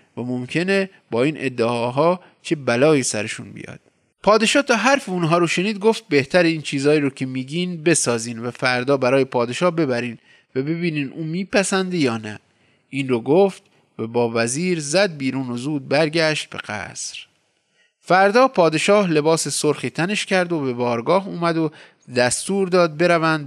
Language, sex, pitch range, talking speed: Persian, male, 130-185 Hz, 155 wpm